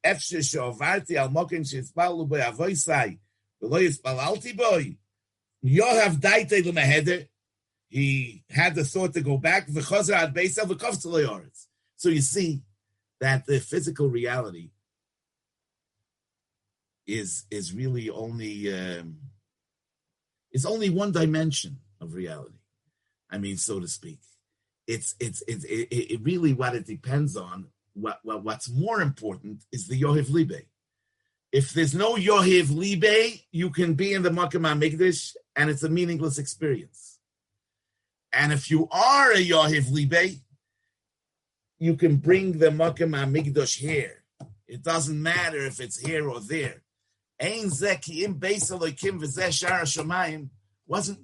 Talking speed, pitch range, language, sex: 105 wpm, 120-175 Hz, English, male